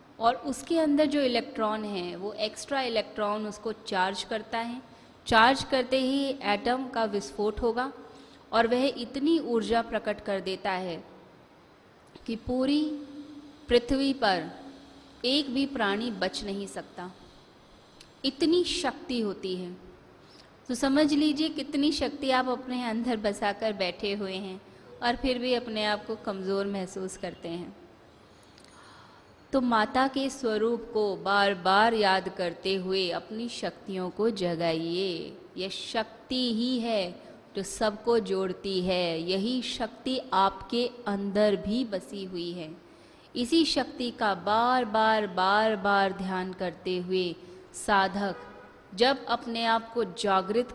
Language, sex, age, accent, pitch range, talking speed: Hindi, female, 20-39, native, 190-245 Hz, 130 wpm